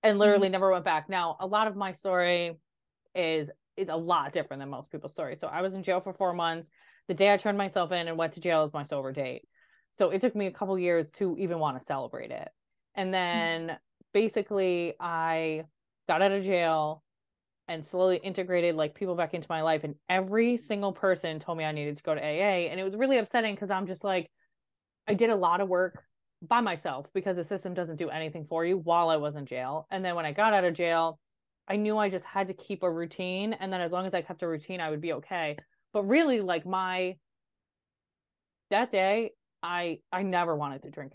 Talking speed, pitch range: 230 wpm, 165-195 Hz